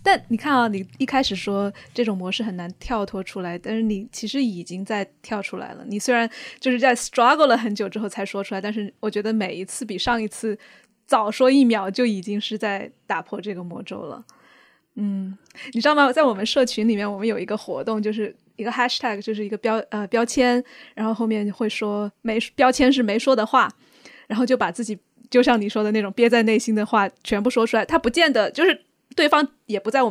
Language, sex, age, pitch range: Chinese, female, 20-39, 210-250 Hz